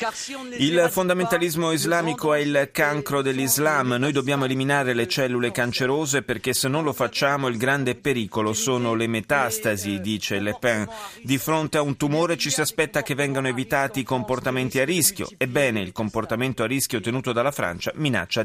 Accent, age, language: native, 30-49, Italian